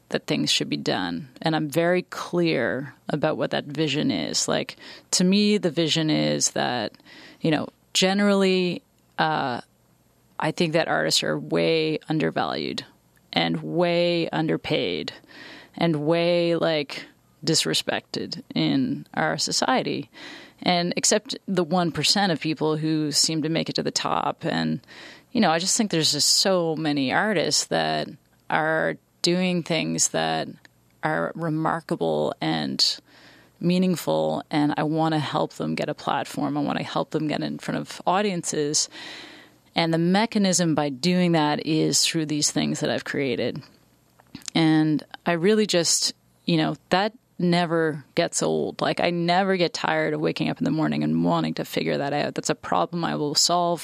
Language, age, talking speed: English, 30-49, 155 wpm